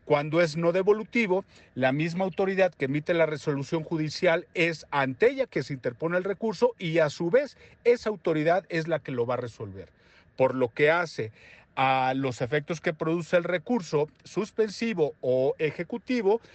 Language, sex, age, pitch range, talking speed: Spanish, male, 40-59, 140-200 Hz, 170 wpm